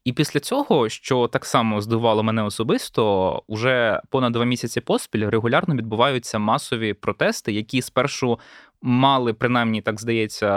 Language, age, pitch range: Ukrainian, 20-39, 115-140 Hz